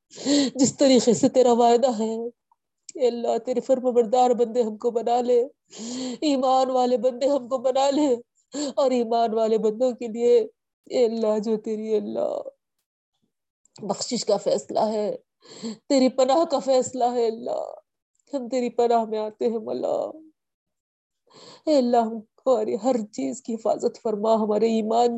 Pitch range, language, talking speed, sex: 230-280 Hz, Urdu, 150 wpm, female